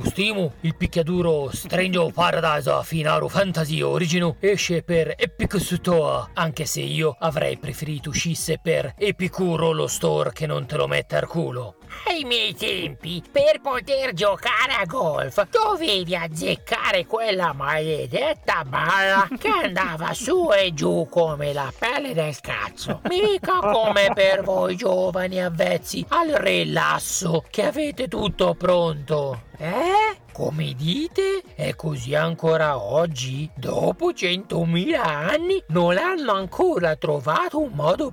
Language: Italian